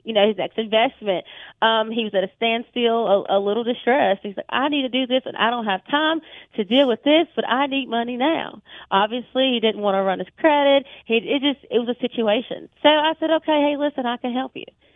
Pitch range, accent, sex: 190-235 Hz, American, female